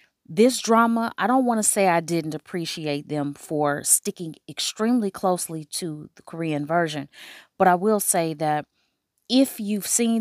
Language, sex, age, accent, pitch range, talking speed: English, female, 30-49, American, 155-190 Hz, 160 wpm